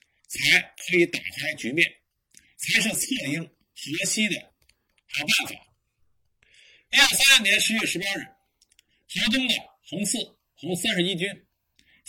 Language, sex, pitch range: Chinese, male, 175-265 Hz